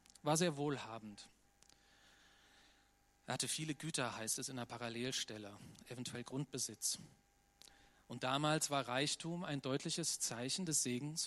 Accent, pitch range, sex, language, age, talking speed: German, 125-170 Hz, male, German, 40-59, 120 wpm